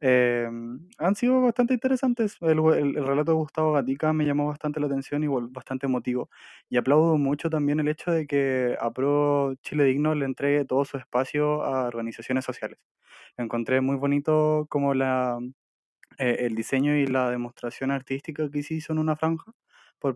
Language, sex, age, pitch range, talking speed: Spanish, male, 20-39, 130-155 Hz, 175 wpm